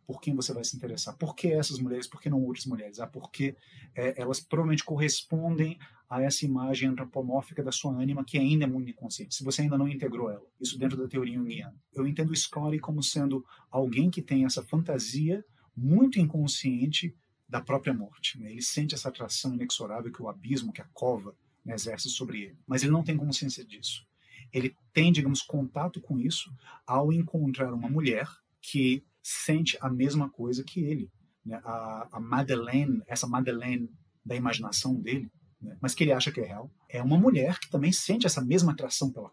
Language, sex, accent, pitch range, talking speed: Portuguese, male, Brazilian, 125-145 Hz, 190 wpm